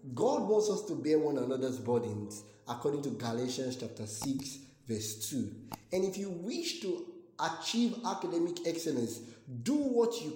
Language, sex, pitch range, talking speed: English, male, 135-225 Hz, 150 wpm